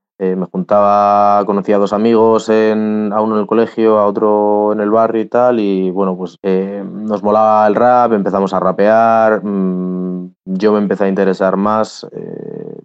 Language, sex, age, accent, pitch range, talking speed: Spanish, male, 20-39, Spanish, 95-110 Hz, 175 wpm